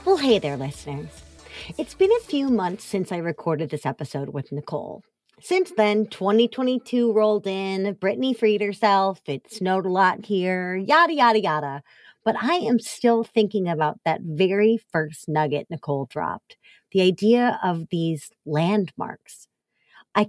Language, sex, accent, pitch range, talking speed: English, female, American, 160-230 Hz, 150 wpm